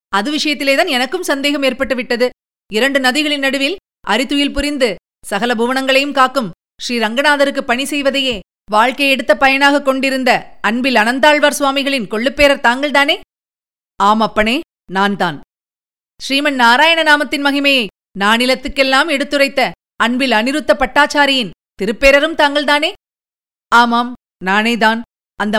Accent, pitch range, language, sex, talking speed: native, 235-285 Hz, Tamil, female, 90 wpm